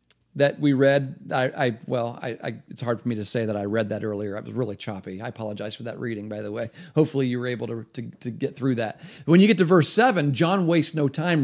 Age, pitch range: 40-59, 125-175 Hz